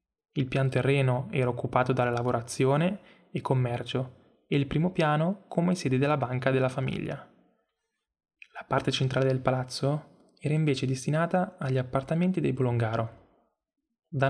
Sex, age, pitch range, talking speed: male, 10-29, 130-155 Hz, 135 wpm